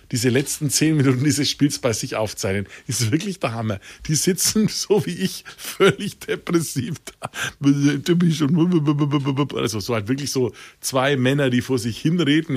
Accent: German